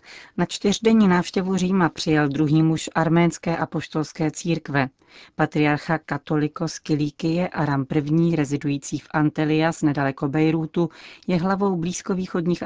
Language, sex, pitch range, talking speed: Czech, female, 145-170 Hz, 110 wpm